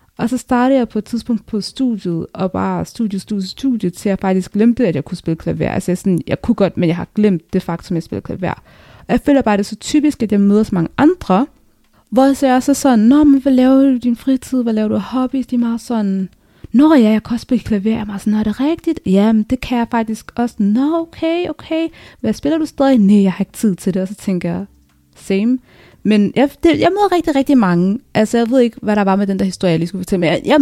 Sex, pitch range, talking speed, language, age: female, 195-255 Hz, 265 wpm, Danish, 20-39